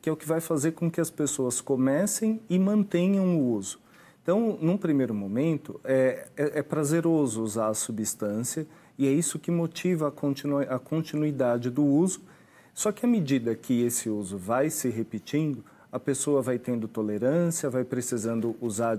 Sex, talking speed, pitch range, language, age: male, 170 wpm, 125-160 Hz, Portuguese, 40-59